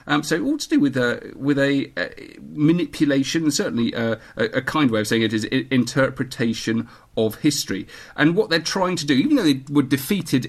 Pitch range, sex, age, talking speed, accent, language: 115-150 Hz, male, 40-59, 215 wpm, British, English